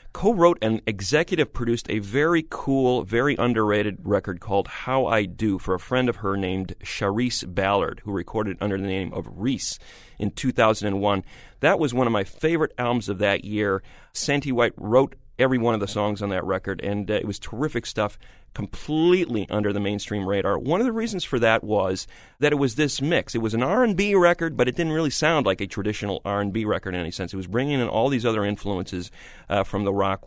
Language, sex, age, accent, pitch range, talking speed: English, male, 40-59, American, 100-130 Hz, 205 wpm